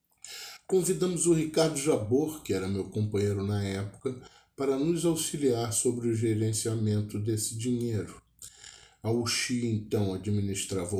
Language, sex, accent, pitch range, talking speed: German, male, Brazilian, 105-130 Hz, 120 wpm